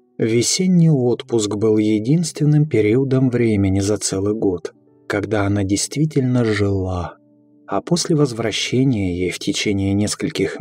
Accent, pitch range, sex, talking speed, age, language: native, 100-140 Hz, male, 115 wpm, 20-39, Russian